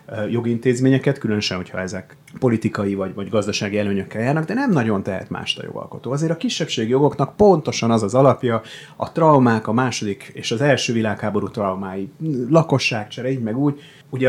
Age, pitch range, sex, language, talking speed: 30-49, 100-145 Hz, male, Hungarian, 155 wpm